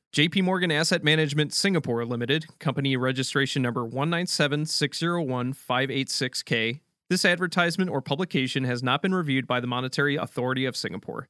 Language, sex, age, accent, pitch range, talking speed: English, male, 30-49, American, 130-175 Hz, 130 wpm